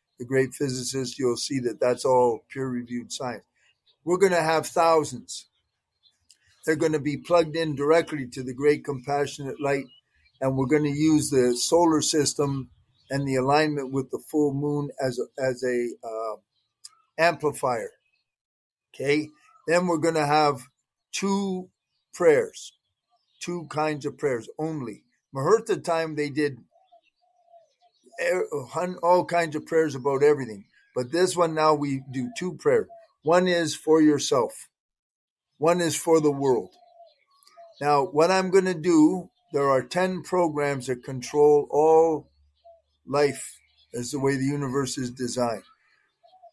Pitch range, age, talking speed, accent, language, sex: 135-170 Hz, 50-69, 140 wpm, American, English, male